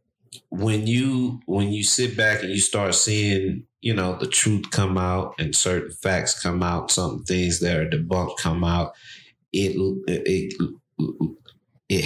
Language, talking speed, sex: English, 155 wpm, male